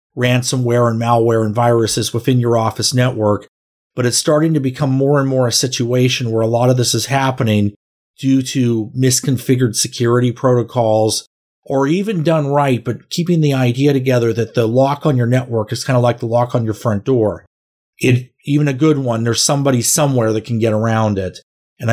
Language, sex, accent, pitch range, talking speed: English, male, American, 115-130 Hz, 190 wpm